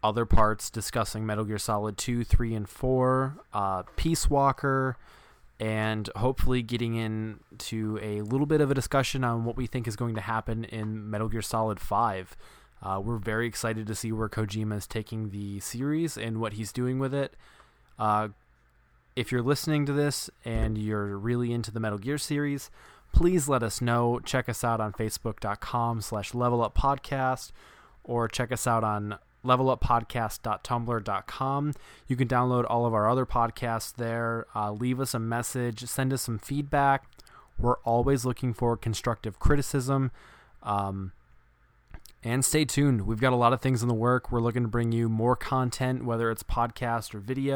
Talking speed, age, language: 170 wpm, 20-39, English